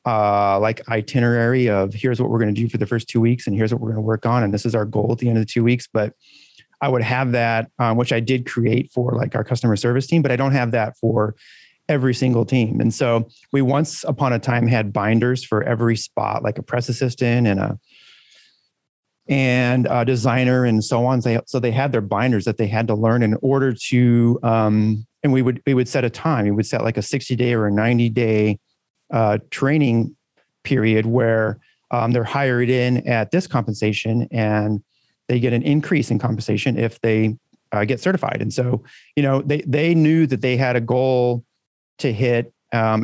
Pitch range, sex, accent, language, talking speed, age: 110-130 Hz, male, American, English, 220 wpm, 30-49